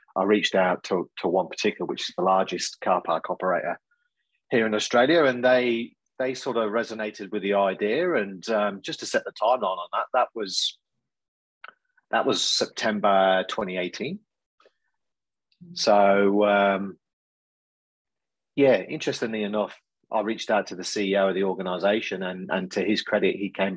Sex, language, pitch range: male, English, 95-120 Hz